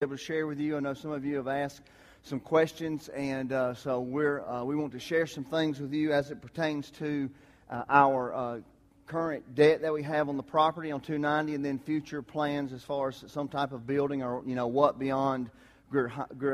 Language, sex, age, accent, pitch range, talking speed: English, male, 40-59, American, 125-155 Hz, 220 wpm